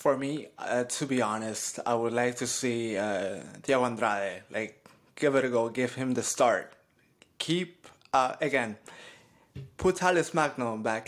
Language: English